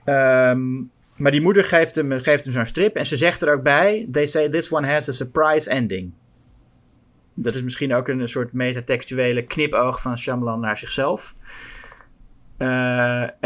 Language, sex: Dutch, male